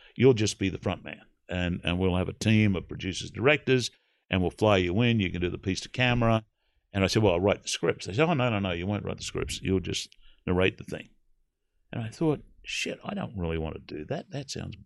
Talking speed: 260 wpm